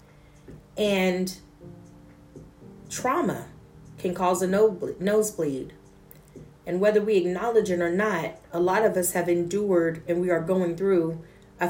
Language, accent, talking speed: English, American, 130 wpm